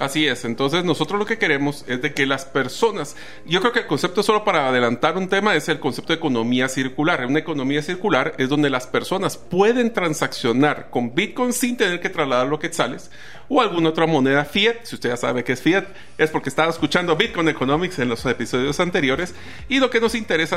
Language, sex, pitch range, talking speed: Spanish, male, 140-200 Hz, 215 wpm